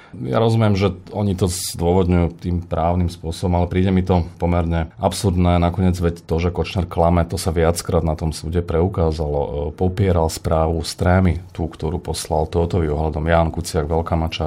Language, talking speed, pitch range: Slovak, 160 wpm, 80-95 Hz